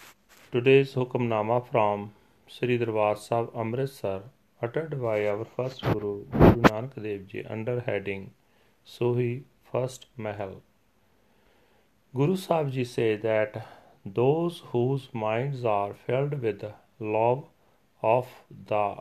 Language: Punjabi